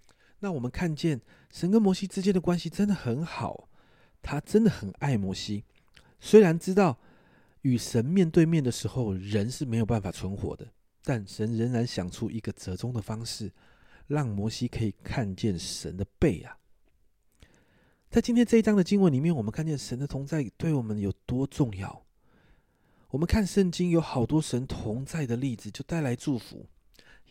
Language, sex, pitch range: Chinese, male, 110-155 Hz